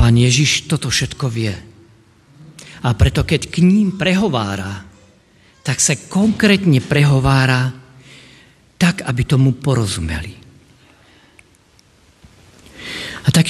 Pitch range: 115-160 Hz